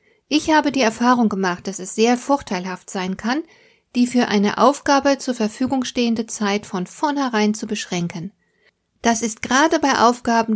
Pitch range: 190-250 Hz